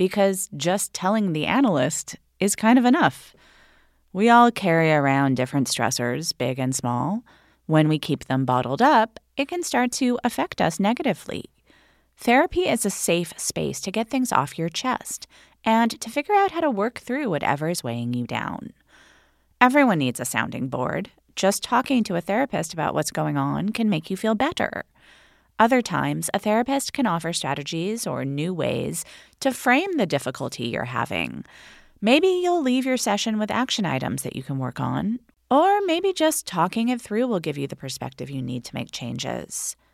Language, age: English, 30-49